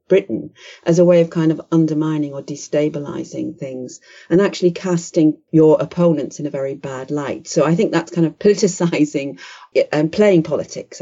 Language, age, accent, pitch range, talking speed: English, 40-59, British, 160-195 Hz, 170 wpm